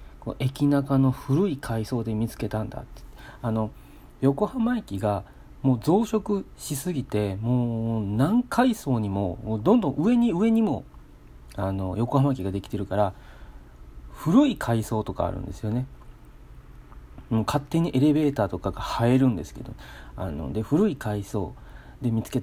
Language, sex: Japanese, male